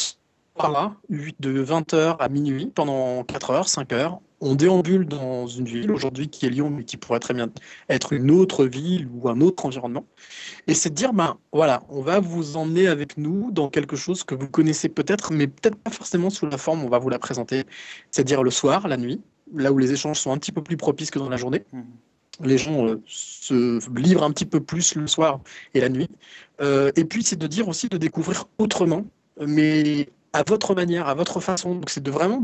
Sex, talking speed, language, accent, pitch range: male, 215 wpm, French, French, 135-170 Hz